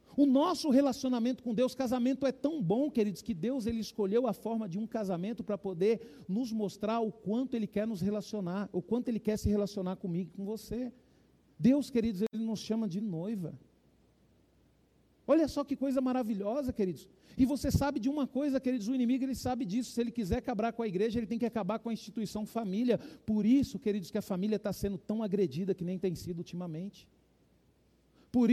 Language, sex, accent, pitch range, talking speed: Portuguese, male, Brazilian, 205-255 Hz, 195 wpm